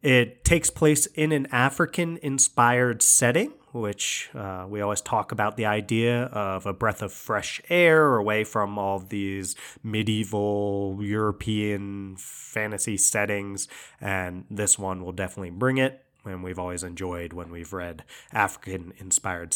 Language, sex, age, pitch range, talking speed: English, male, 30-49, 100-130 Hz, 135 wpm